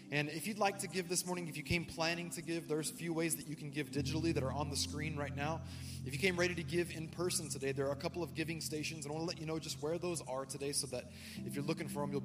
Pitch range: 135-165 Hz